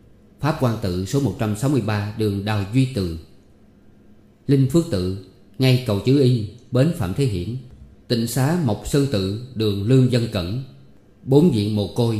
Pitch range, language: 100-130 Hz, Vietnamese